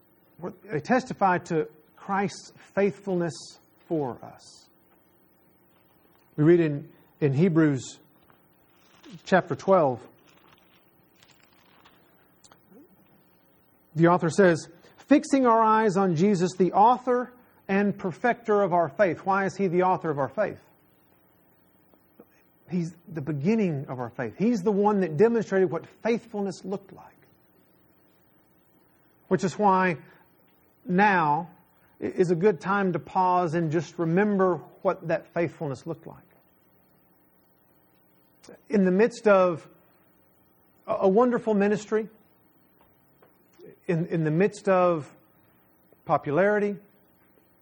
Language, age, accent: English, 50-69, American